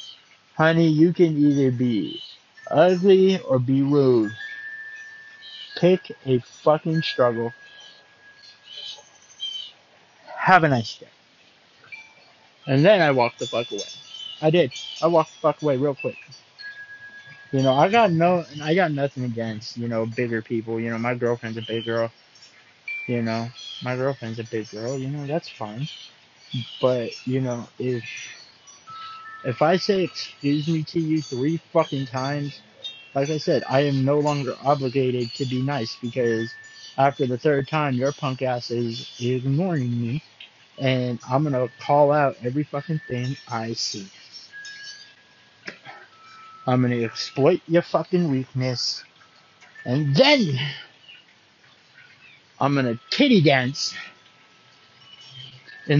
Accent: American